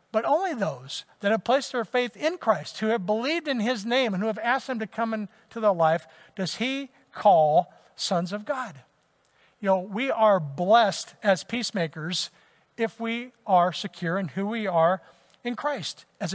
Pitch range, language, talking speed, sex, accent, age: 170-230 Hz, English, 185 wpm, male, American, 60-79